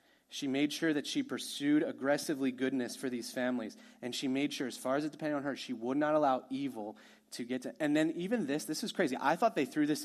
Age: 30-49